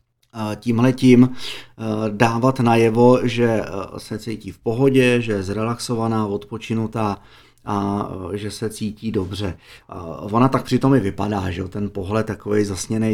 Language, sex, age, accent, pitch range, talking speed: Czech, male, 30-49, native, 105-125 Hz, 130 wpm